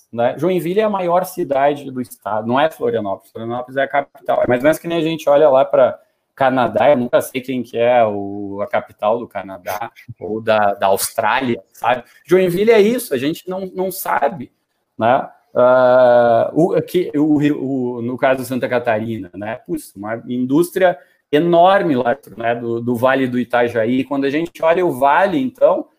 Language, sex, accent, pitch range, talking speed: Portuguese, male, Brazilian, 125-170 Hz, 180 wpm